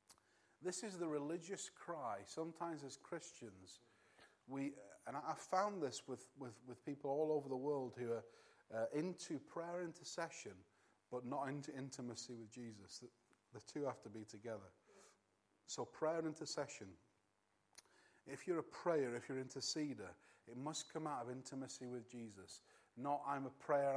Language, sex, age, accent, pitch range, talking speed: English, male, 30-49, British, 125-195 Hz, 165 wpm